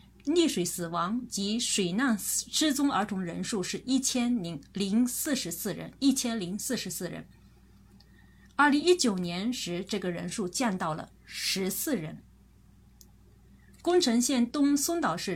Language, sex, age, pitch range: Chinese, female, 30-49, 180-250 Hz